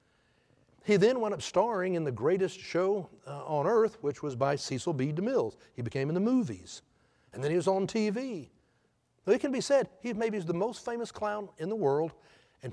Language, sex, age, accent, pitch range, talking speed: English, male, 60-79, American, 125-190 Hz, 210 wpm